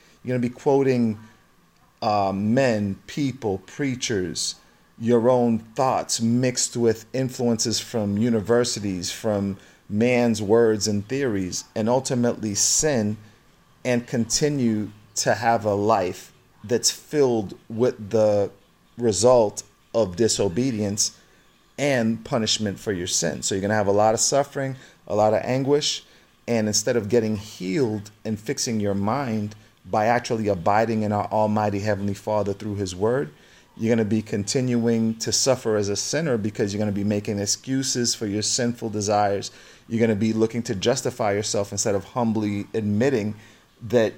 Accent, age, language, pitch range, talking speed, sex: American, 40-59, English, 105-120 Hz, 150 wpm, male